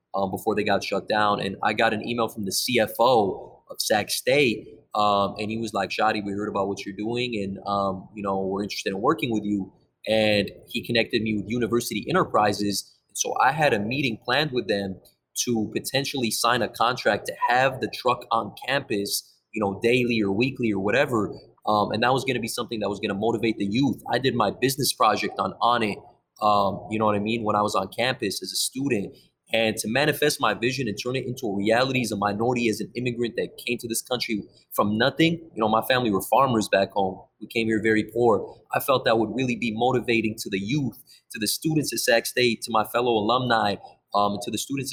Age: 20-39